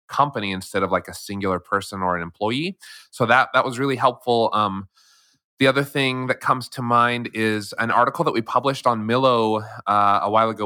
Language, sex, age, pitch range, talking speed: English, male, 20-39, 100-120 Hz, 205 wpm